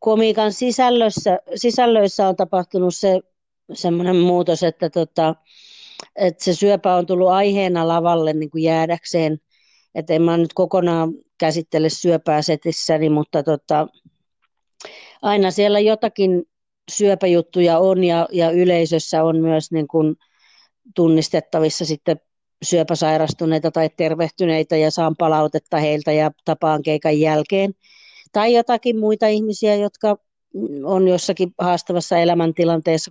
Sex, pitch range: female, 160-190 Hz